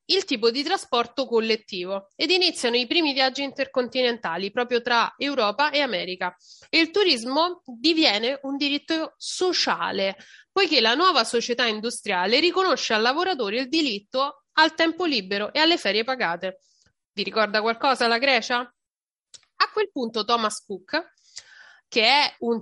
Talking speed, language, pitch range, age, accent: 140 wpm, Italian, 210-300 Hz, 30-49, native